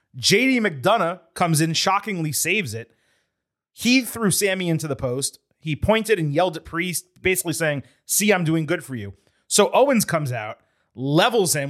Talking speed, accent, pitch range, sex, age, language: 170 wpm, American, 135-185 Hz, male, 30-49, English